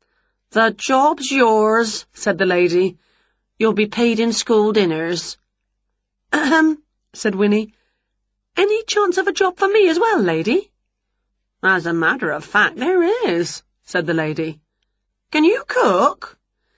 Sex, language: female, Chinese